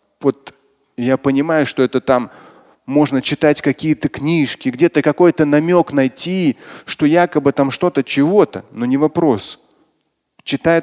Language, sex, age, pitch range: Russian, male, 30-49, 115-145 Hz